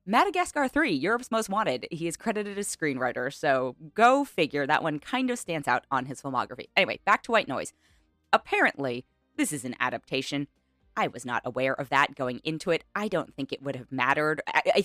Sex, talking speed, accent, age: female, 200 wpm, American, 20-39